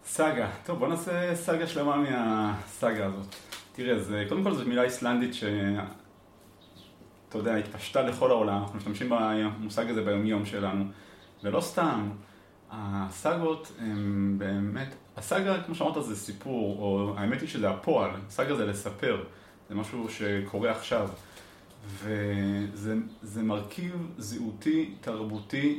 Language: Hebrew